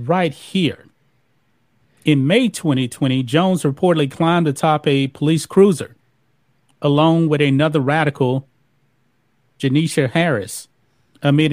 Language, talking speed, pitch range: English, 100 wpm, 125-150 Hz